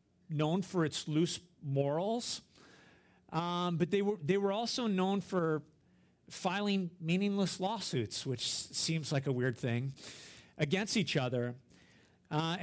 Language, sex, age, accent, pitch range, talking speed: English, male, 50-69, American, 160-225 Hz, 130 wpm